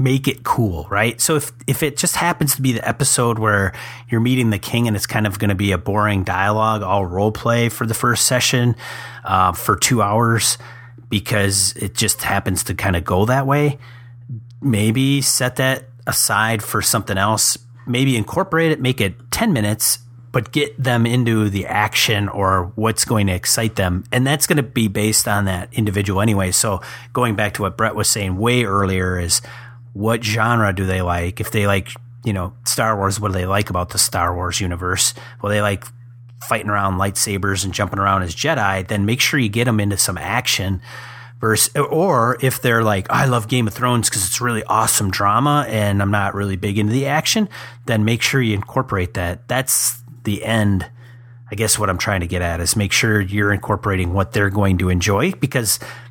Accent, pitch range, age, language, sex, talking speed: American, 100-120 Hz, 30-49, English, male, 200 wpm